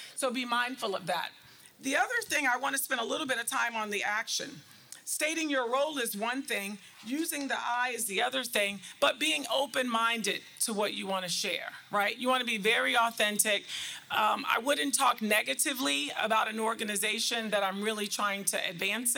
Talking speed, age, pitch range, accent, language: 195 wpm, 40-59, 205-260 Hz, American, English